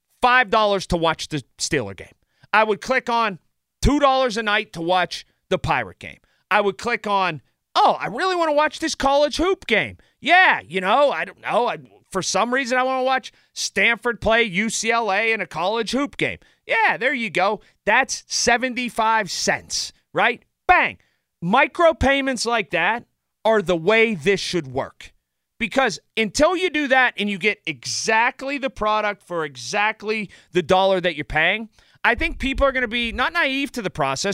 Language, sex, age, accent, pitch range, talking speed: English, male, 40-59, American, 190-255 Hz, 180 wpm